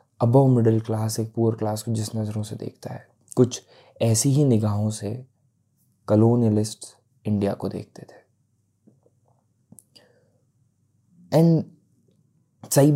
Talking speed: 110 wpm